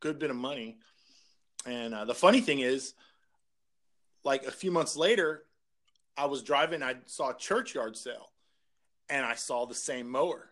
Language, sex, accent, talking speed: English, male, American, 165 wpm